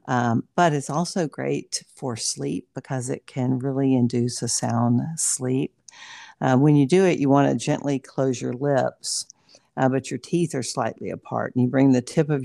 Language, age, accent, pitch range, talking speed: English, 50-69, American, 125-150 Hz, 195 wpm